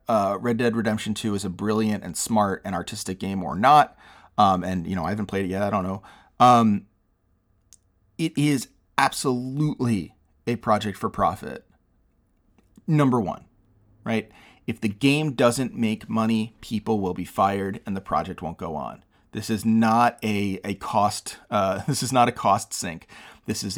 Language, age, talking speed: English, 30-49, 175 wpm